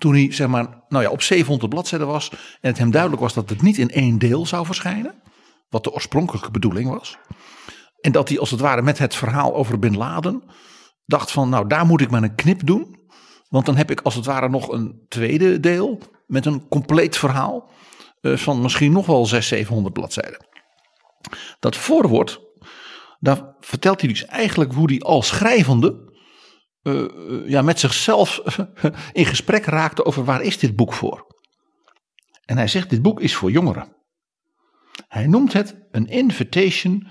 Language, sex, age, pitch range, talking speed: Dutch, male, 50-69, 125-175 Hz, 175 wpm